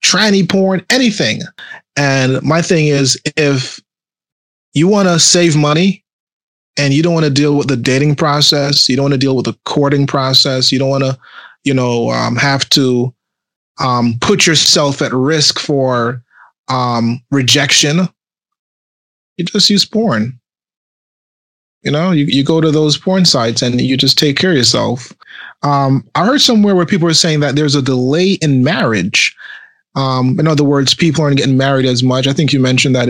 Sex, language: male, English